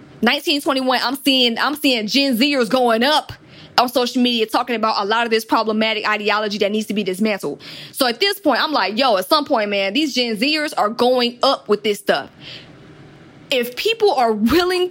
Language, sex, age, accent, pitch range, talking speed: English, female, 20-39, American, 210-275 Hz, 195 wpm